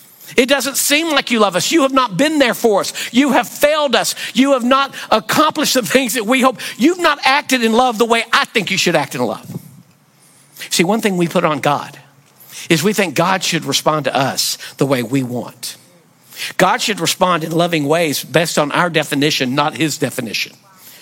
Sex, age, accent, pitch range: male, 50-69, American, 145-210 Hz